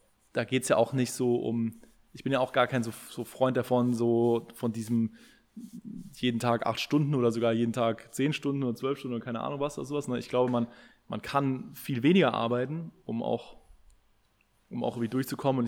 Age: 20-39